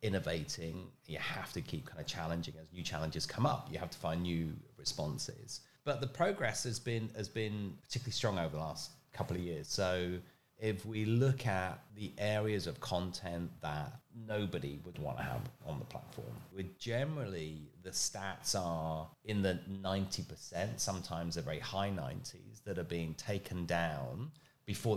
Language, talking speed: English, 175 wpm